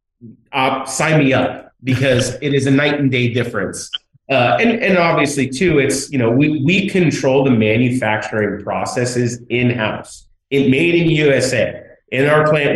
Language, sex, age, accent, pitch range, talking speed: English, male, 30-49, American, 115-135 Hz, 170 wpm